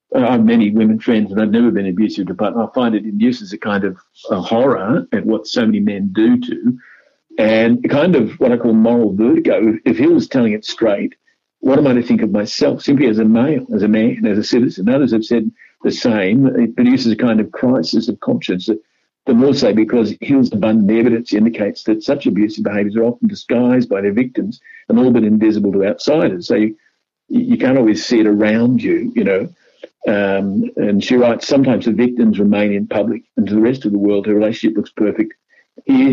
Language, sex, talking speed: English, male, 215 wpm